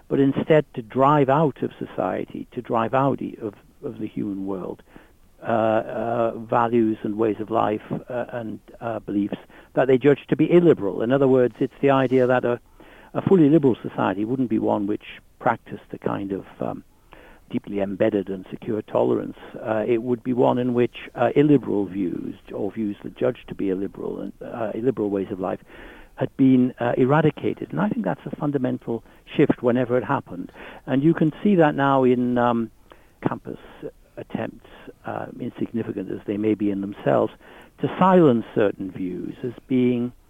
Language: English